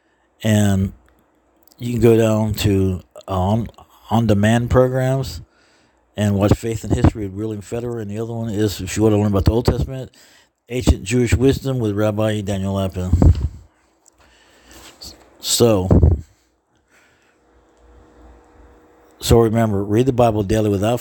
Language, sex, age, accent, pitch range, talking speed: English, male, 60-79, American, 95-115 Hz, 135 wpm